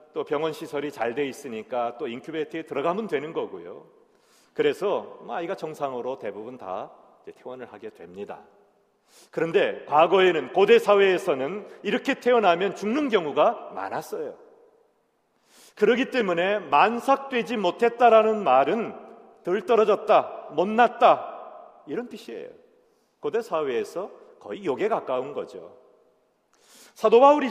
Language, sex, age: Korean, male, 40-59